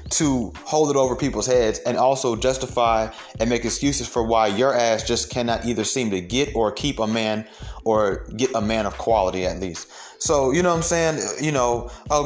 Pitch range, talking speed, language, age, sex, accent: 110-140 Hz, 210 wpm, English, 30-49, male, American